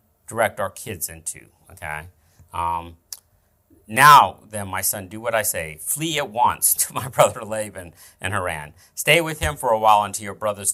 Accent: American